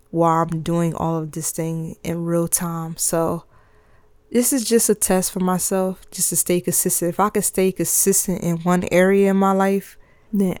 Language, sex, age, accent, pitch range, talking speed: English, female, 20-39, American, 165-180 Hz, 190 wpm